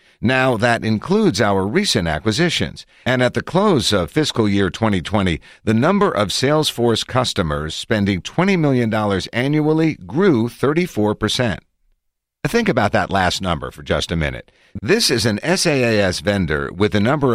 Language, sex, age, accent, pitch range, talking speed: English, male, 50-69, American, 90-130 Hz, 145 wpm